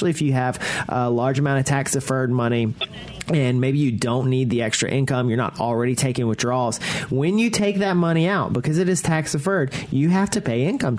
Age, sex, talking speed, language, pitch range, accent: 30-49, male, 200 wpm, English, 115-150 Hz, American